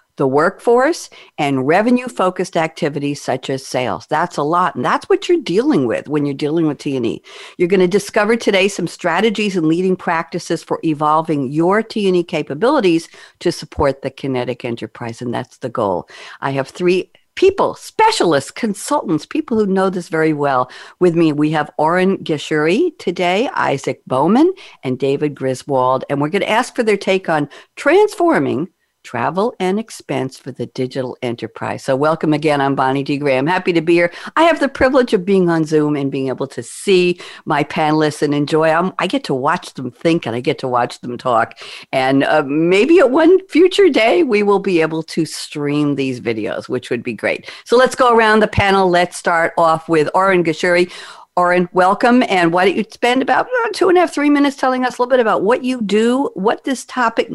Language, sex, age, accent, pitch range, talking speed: English, female, 50-69, American, 150-225 Hz, 195 wpm